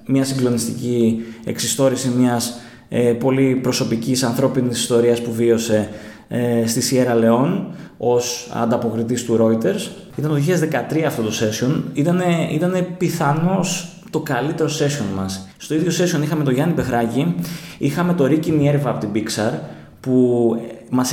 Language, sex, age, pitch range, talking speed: Greek, male, 20-39, 120-170 Hz, 135 wpm